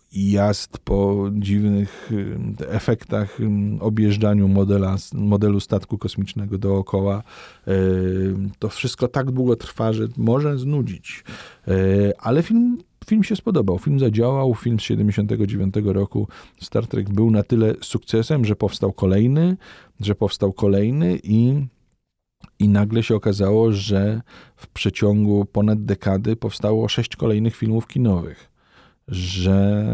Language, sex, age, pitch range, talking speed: Polish, male, 40-59, 95-115 Hz, 115 wpm